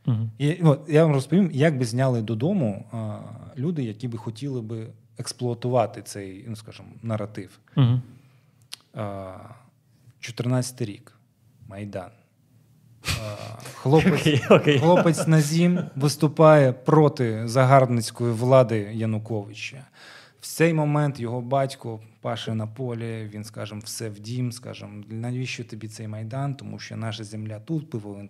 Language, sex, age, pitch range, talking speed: Ukrainian, male, 20-39, 115-145 Hz, 115 wpm